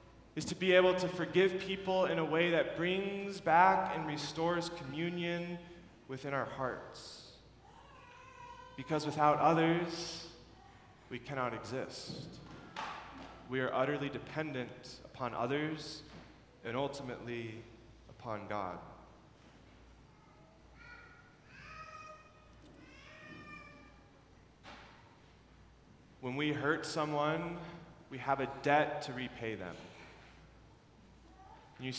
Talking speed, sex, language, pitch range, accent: 90 wpm, male, English, 135-180 Hz, American